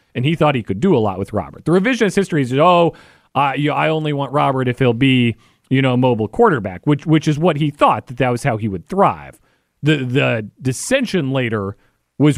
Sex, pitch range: male, 125-170 Hz